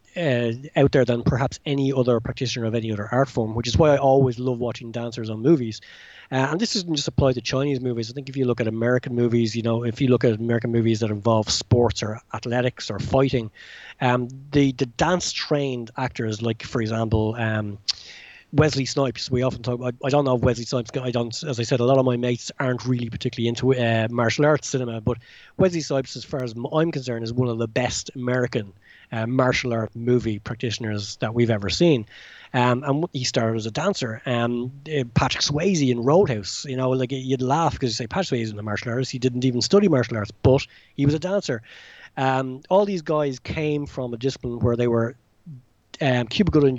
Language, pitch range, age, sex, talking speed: English, 115-135 Hz, 20-39, male, 220 wpm